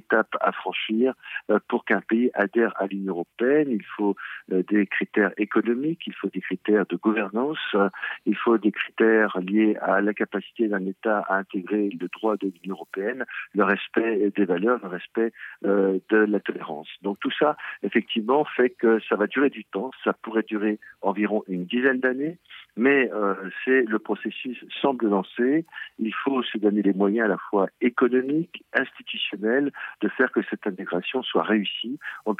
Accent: French